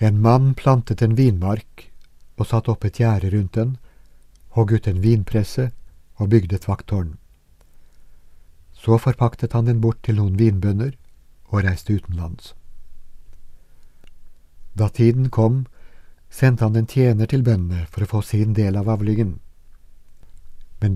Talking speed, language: 130 wpm, Danish